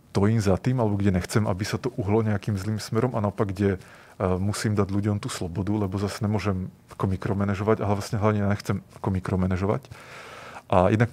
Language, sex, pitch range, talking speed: Czech, male, 100-115 Hz, 165 wpm